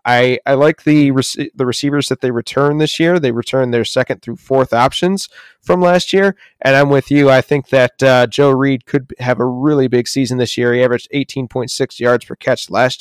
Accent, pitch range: American, 125-145 Hz